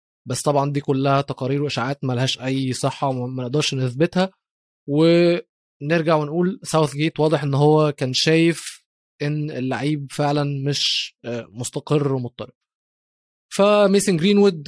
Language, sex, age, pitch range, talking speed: Arabic, male, 20-39, 145-180 Hz, 120 wpm